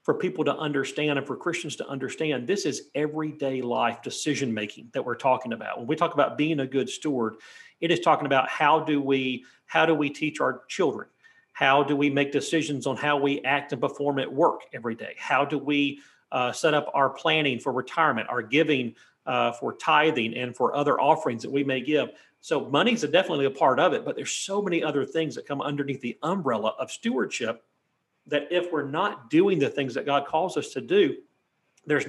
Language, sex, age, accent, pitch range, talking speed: English, male, 40-59, American, 140-170 Hz, 210 wpm